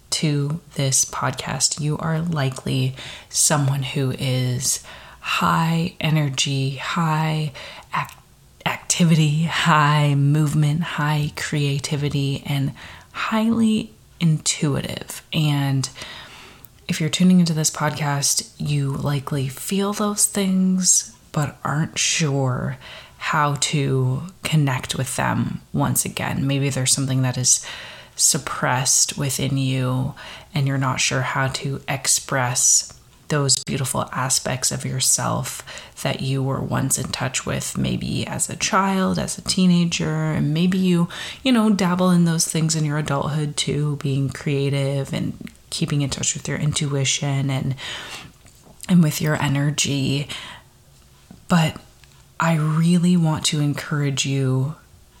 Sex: female